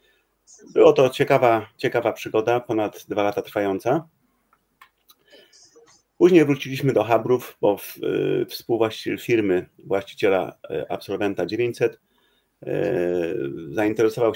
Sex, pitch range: male, 105-140 Hz